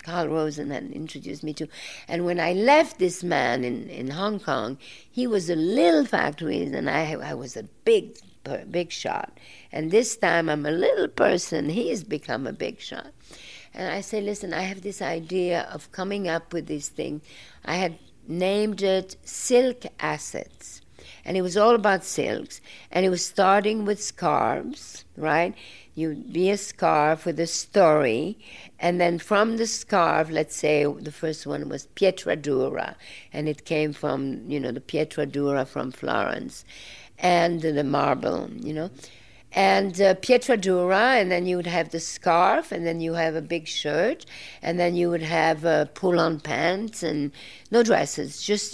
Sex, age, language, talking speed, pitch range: female, 50-69, English, 170 wpm, 155-195 Hz